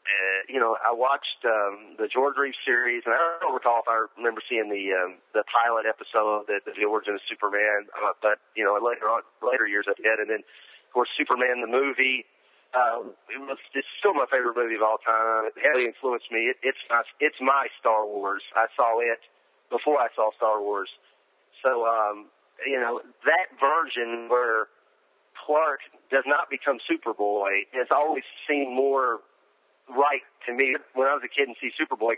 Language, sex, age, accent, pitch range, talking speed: English, male, 40-59, American, 105-140 Hz, 190 wpm